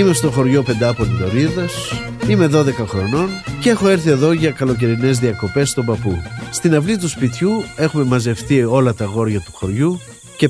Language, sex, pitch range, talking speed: Greek, male, 115-160 Hz, 165 wpm